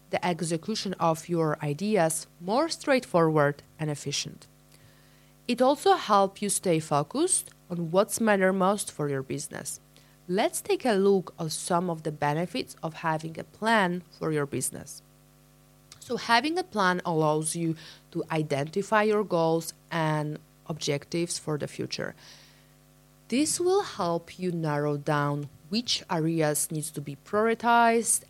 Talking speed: 140 wpm